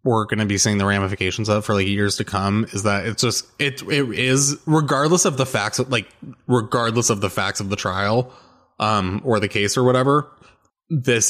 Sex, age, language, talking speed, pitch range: male, 20-39, English, 210 wpm, 100-120 Hz